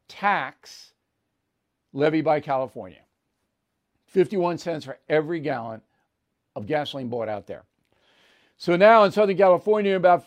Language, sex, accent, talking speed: English, male, American, 115 wpm